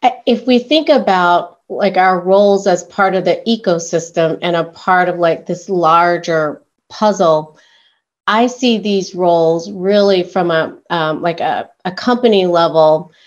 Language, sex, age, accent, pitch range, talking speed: English, female, 40-59, American, 170-195 Hz, 150 wpm